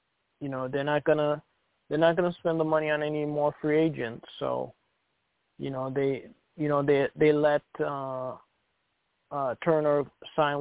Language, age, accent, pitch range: English, 20-39, American, 135-155 Hz